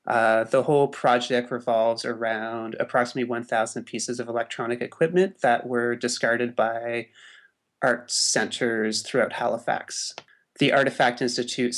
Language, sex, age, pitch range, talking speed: English, male, 30-49, 115-125 Hz, 115 wpm